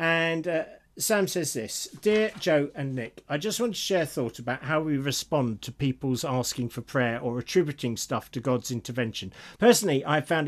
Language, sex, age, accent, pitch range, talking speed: English, male, 50-69, British, 120-165 Hz, 195 wpm